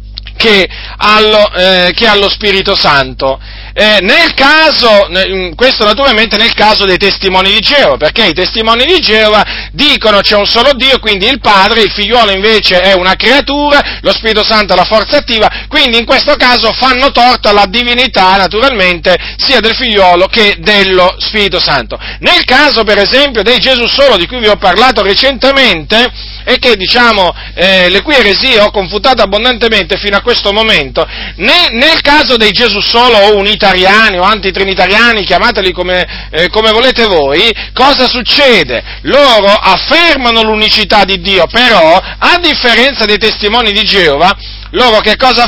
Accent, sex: native, male